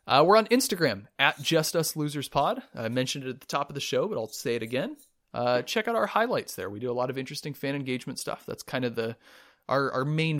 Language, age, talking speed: English, 30-49, 260 wpm